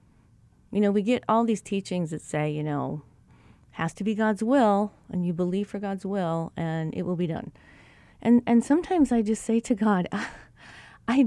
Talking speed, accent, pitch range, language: 195 wpm, American, 160-225 Hz, English